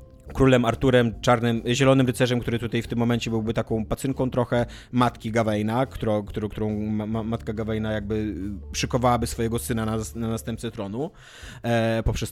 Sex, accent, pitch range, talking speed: male, native, 115-135 Hz, 145 wpm